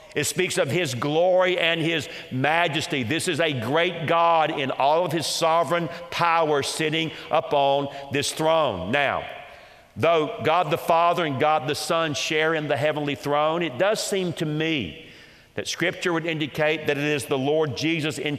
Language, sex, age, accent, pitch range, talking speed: English, male, 50-69, American, 145-170 Hz, 175 wpm